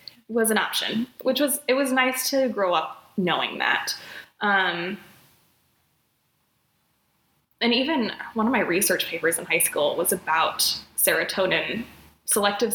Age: 20-39